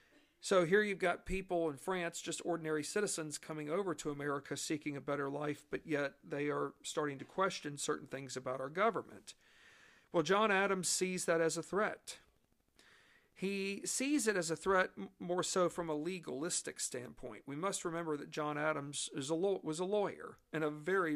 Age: 50-69